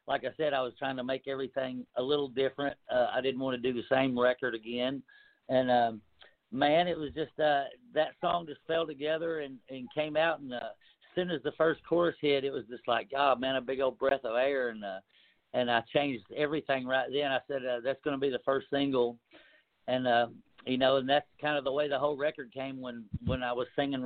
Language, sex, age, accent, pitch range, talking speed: English, male, 60-79, American, 130-155 Hz, 240 wpm